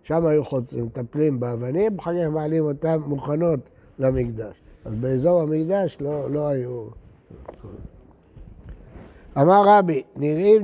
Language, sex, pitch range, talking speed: Hebrew, male, 140-180 Hz, 105 wpm